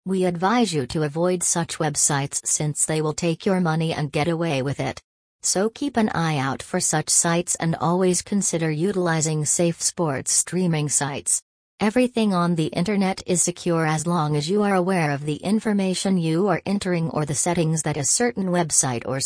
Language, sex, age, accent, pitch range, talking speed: English, female, 40-59, American, 150-180 Hz, 185 wpm